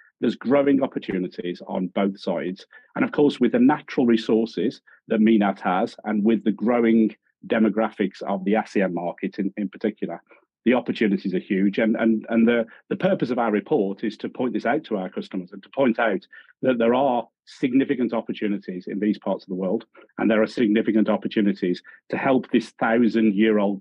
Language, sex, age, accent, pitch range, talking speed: English, male, 40-59, British, 105-125 Hz, 185 wpm